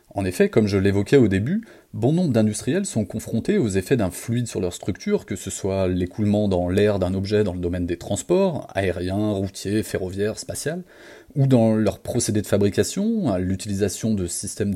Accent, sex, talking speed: French, male, 185 wpm